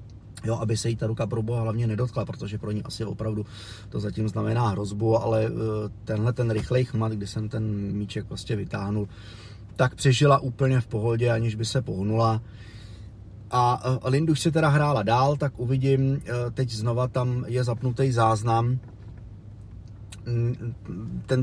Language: Czech